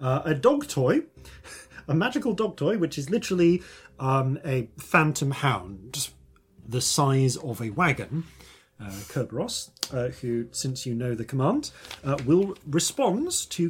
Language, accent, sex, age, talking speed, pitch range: English, British, male, 30-49, 145 wpm, 105-145 Hz